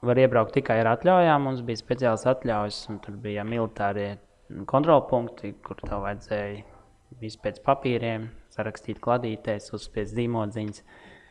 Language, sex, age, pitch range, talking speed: English, male, 20-39, 110-130 Hz, 120 wpm